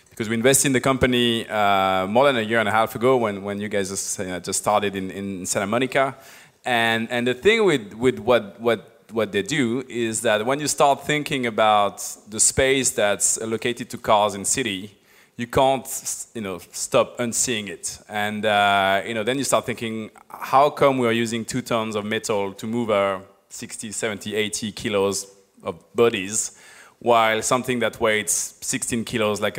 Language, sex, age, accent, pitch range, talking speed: English, male, 20-39, French, 105-125 Hz, 190 wpm